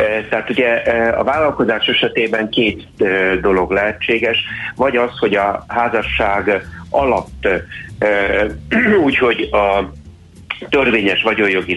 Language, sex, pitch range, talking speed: Hungarian, male, 95-110 Hz, 95 wpm